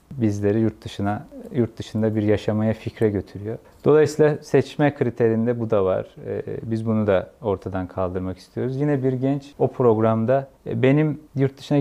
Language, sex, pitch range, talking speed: Turkish, male, 105-130 Hz, 145 wpm